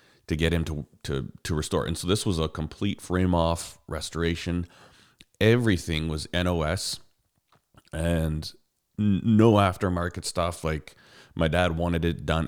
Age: 30-49